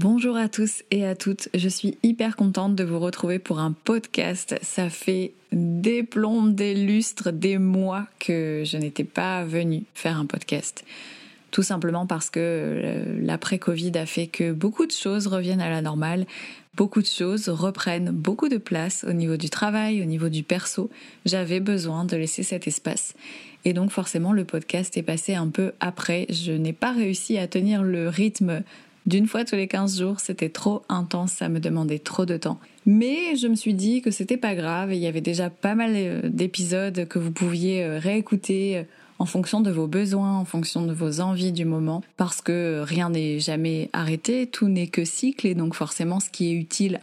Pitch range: 170-205 Hz